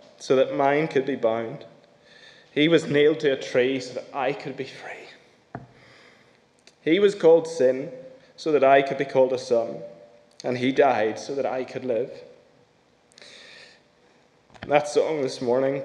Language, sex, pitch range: English, male, 130-165 Hz